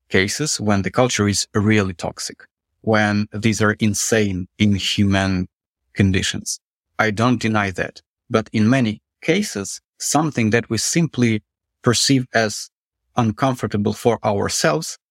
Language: English